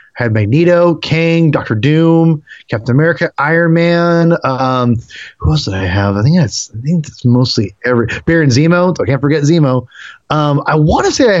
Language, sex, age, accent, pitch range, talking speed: English, male, 30-49, American, 125-165 Hz, 190 wpm